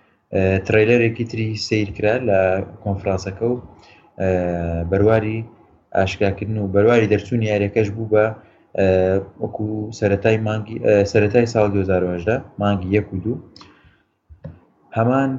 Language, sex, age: Arabic, male, 20-39